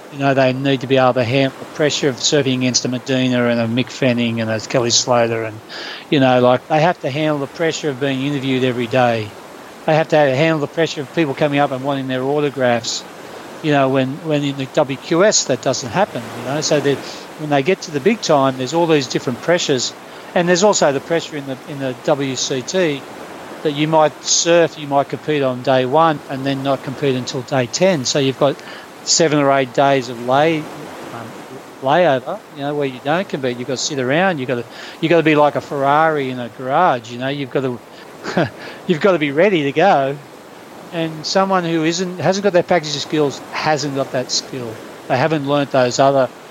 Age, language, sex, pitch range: 40-59, English, male, 130-155 Hz